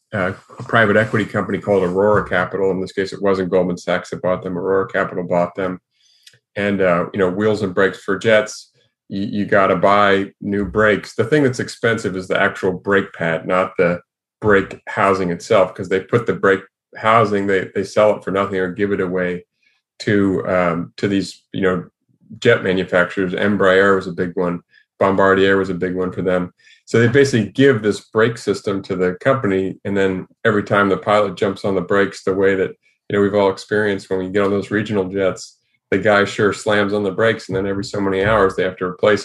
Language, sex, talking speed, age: English, male, 215 wpm, 30-49